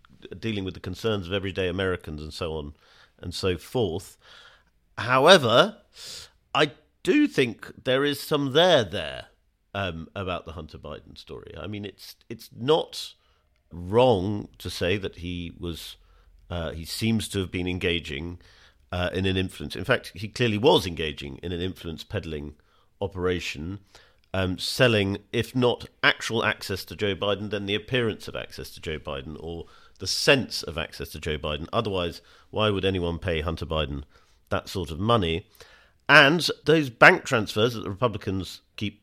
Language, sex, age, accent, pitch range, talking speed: English, male, 50-69, British, 85-110 Hz, 160 wpm